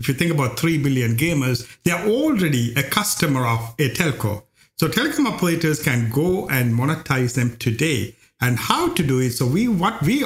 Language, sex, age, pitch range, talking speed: English, male, 60-79, 120-170 Hz, 195 wpm